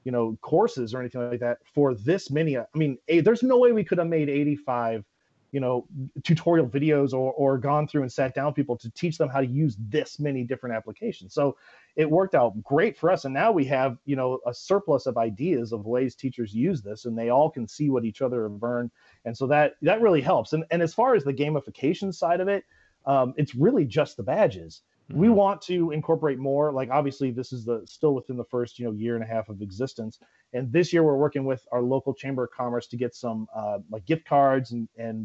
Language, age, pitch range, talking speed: English, 30-49, 120-150 Hz, 235 wpm